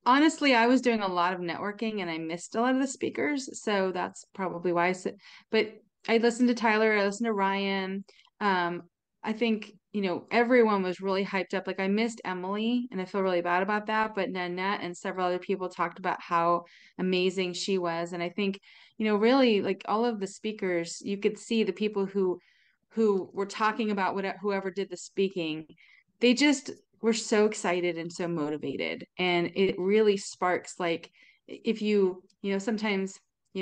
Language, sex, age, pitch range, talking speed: English, female, 30-49, 175-220 Hz, 195 wpm